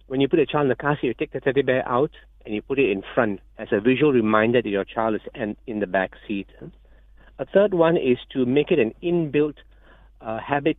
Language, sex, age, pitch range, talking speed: English, male, 50-69, 105-135 Hz, 240 wpm